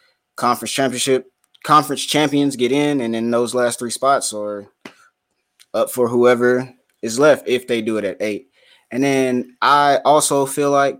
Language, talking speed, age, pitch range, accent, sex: English, 165 wpm, 20-39, 115-135 Hz, American, male